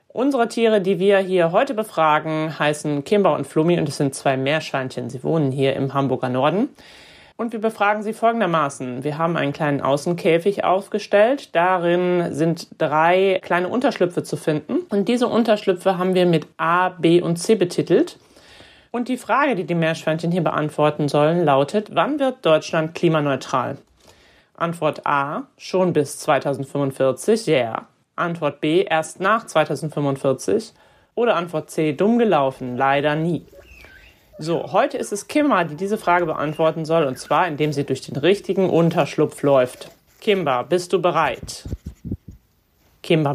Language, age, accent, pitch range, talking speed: German, 30-49, German, 150-190 Hz, 150 wpm